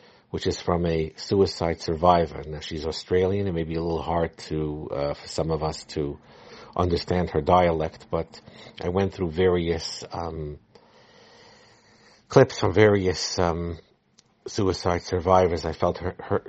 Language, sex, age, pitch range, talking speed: English, male, 50-69, 80-95 Hz, 150 wpm